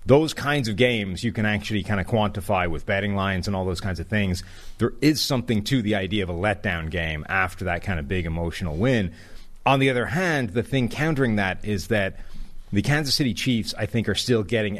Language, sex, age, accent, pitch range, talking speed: English, male, 30-49, American, 95-115 Hz, 225 wpm